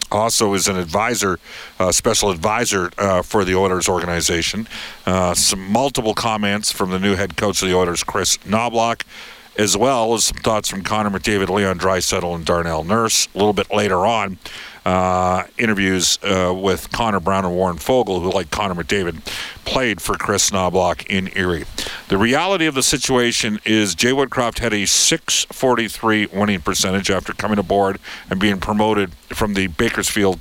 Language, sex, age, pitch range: English, male, 50-69, 95-110 Hz